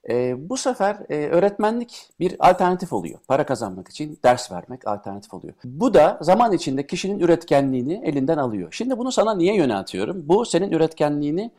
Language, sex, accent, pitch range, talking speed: Turkish, male, native, 130-185 Hz, 160 wpm